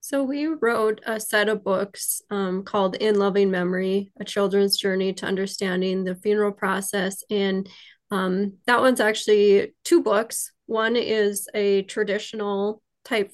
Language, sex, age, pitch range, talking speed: English, female, 20-39, 195-220 Hz, 145 wpm